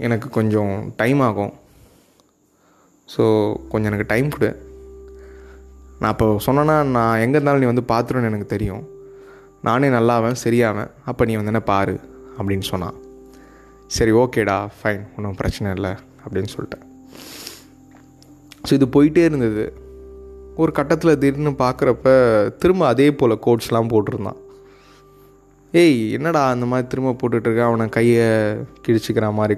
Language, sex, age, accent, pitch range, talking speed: Tamil, male, 20-39, native, 105-130 Hz, 125 wpm